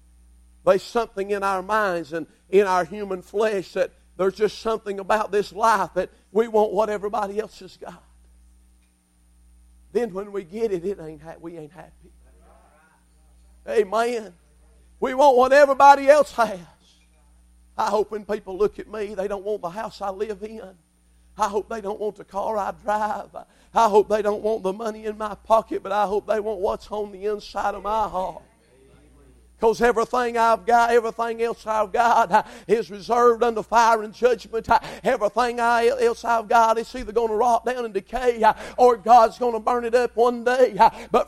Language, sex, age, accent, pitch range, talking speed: English, male, 50-69, American, 190-240 Hz, 180 wpm